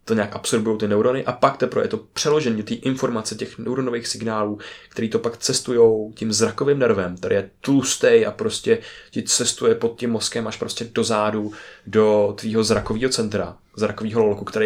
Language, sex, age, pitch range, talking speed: Czech, male, 20-39, 115-150 Hz, 180 wpm